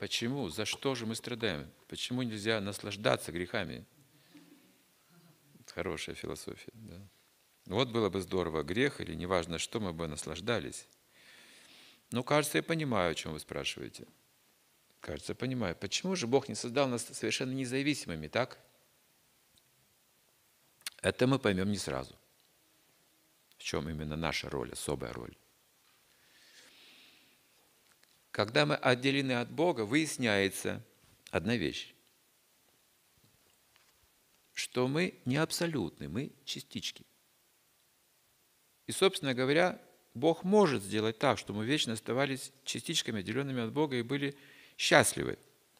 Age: 50-69